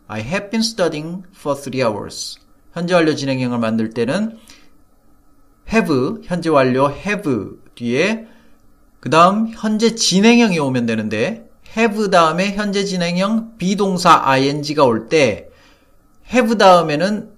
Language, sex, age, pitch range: Korean, male, 40-59, 135-200 Hz